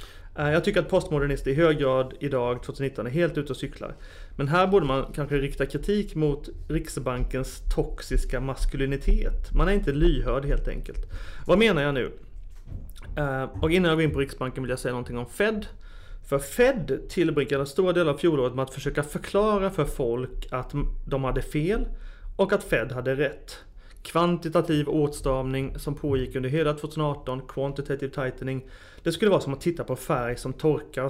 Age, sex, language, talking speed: 30-49, male, Swedish, 170 wpm